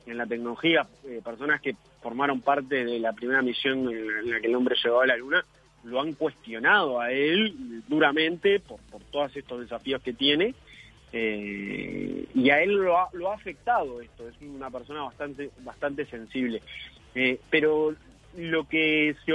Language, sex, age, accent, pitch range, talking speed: Spanish, male, 30-49, Argentinian, 125-165 Hz, 175 wpm